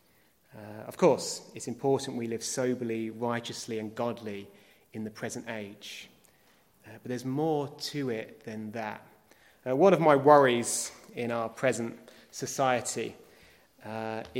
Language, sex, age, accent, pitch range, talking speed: English, male, 30-49, British, 115-145 Hz, 140 wpm